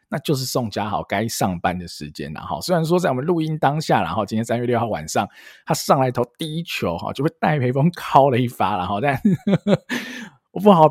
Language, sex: Chinese, male